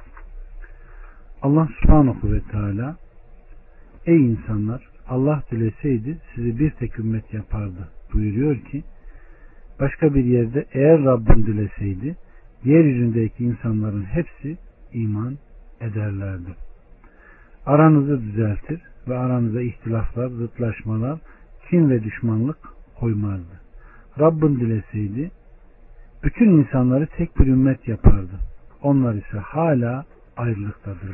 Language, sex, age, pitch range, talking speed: Turkish, male, 60-79, 105-140 Hz, 95 wpm